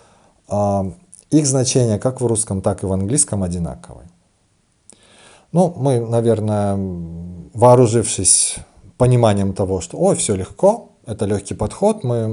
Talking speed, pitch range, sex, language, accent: 120 wpm, 90-115 Hz, male, Russian, native